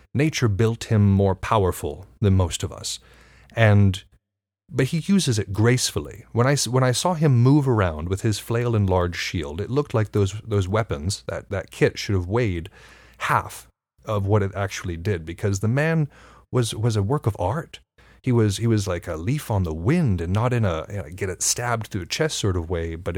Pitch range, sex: 85-115 Hz, male